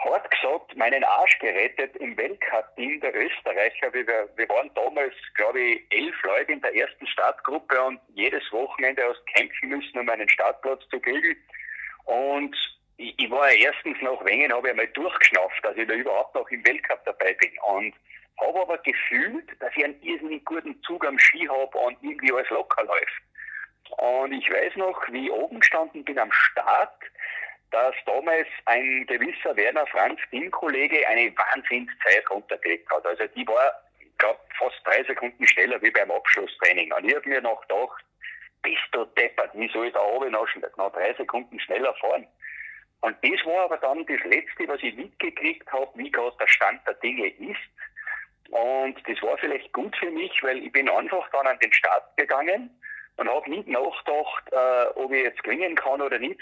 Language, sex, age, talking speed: German, male, 50-69, 180 wpm